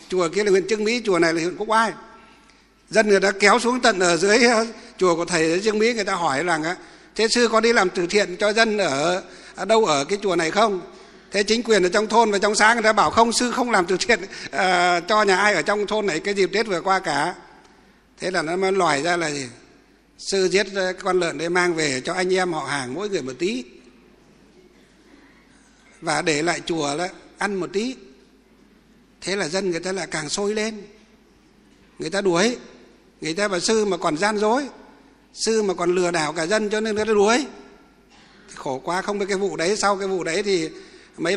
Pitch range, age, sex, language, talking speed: 170-215 Hz, 60-79, male, Vietnamese, 225 wpm